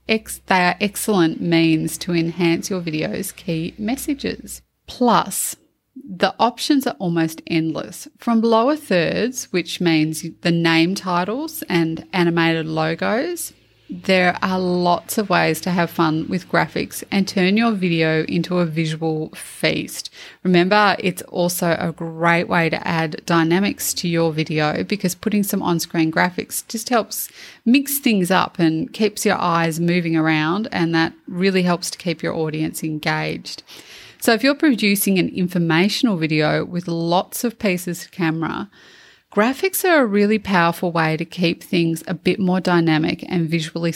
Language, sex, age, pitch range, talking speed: English, female, 20-39, 165-205 Hz, 150 wpm